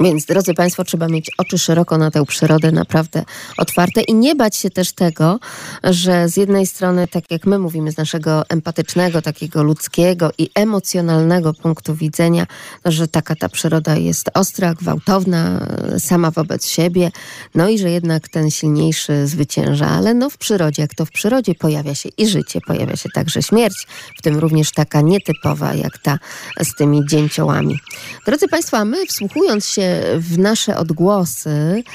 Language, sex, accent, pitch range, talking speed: Polish, female, native, 160-215 Hz, 165 wpm